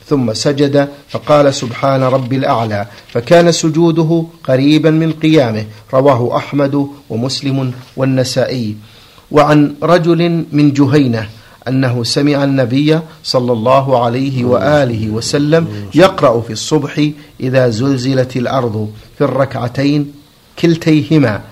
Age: 50-69